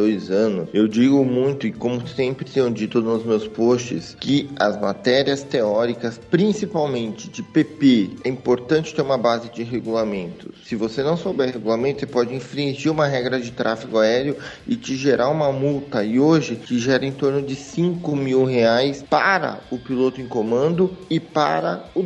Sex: male